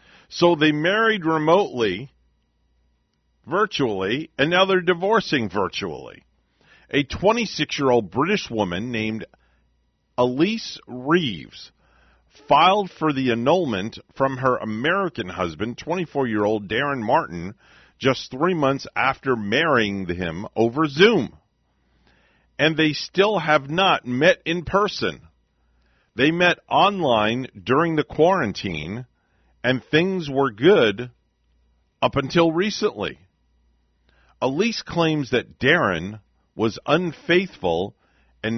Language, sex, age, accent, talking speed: English, male, 50-69, American, 105 wpm